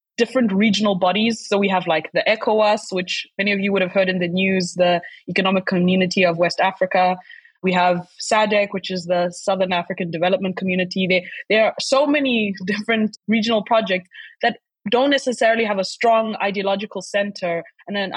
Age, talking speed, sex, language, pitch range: 20-39, 175 wpm, female, English, 180-215 Hz